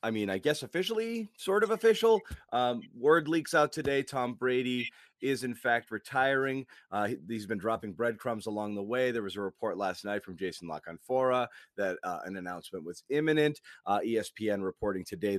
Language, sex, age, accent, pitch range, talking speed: English, male, 30-49, American, 110-150 Hz, 180 wpm